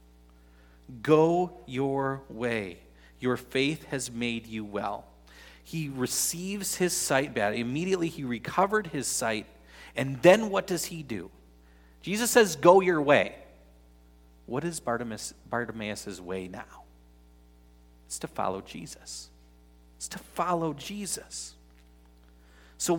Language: English